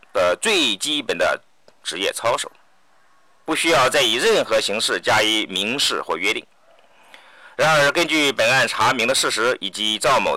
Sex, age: male, 50-69